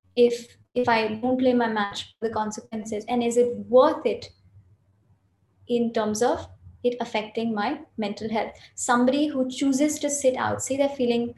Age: 20-39